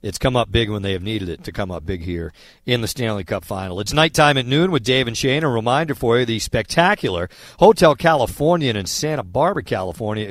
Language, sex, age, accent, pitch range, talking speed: English, male, 50-69, American, 100-150 Hz, 225 wpm